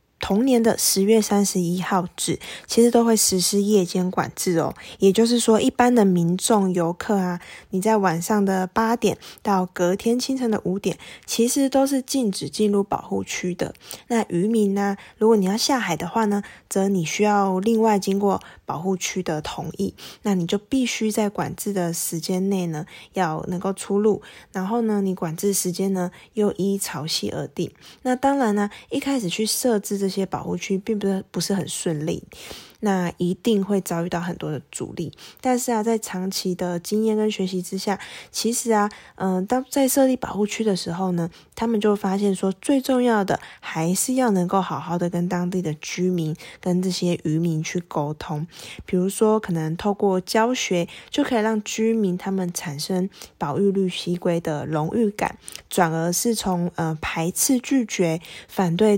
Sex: female